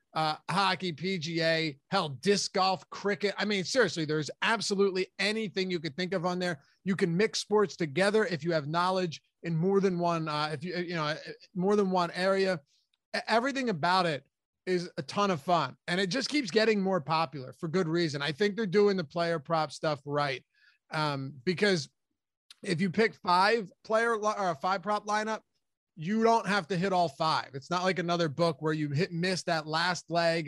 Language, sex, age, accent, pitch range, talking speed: English, male, 30-49, American, 160-200 Hz, 195 wpm